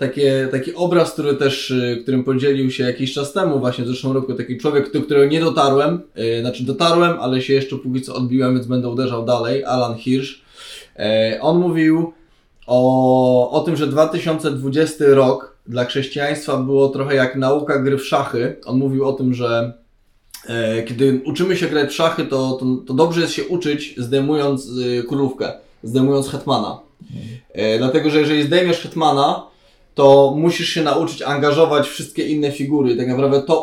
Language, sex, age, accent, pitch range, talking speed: Polish, male, 20-39, native, 130-155 Hz, 175 wpm